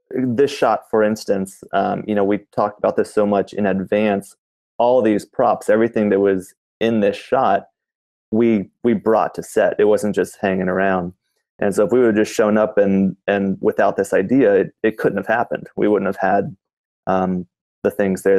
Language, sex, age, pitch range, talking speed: English, male, 20-39, 95-110 Hz, 200 wpm